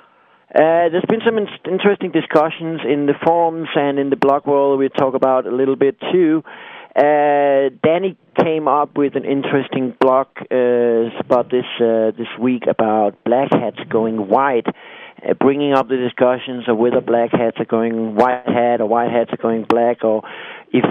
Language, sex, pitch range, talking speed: English, male, 120-145 Hz, 180 wpm